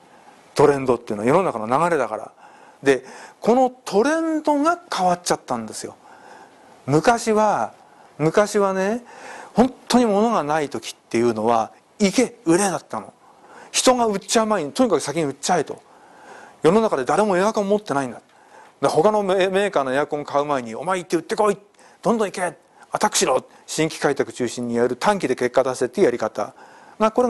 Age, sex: 40-59, male